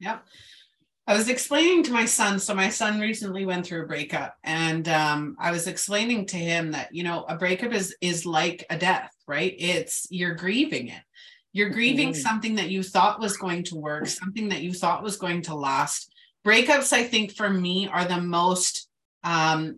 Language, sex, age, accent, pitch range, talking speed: English, female, 30-49, American, 170-215 Hz, 195 wpm